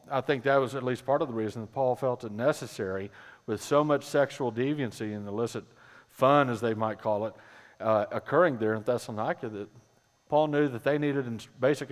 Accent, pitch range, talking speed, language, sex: American, 115-150 Hz, 200 wpm, English, male